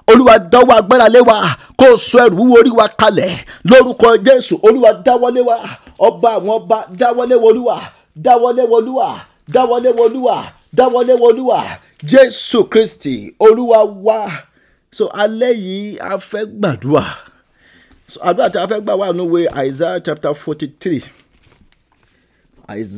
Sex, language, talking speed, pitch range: male, English, 130 wpm, 165-235 Hz